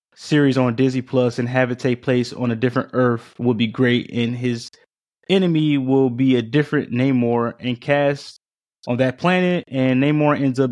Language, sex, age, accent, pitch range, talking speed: English, male, 20-39, American, 120-150 Hz, 185 wpm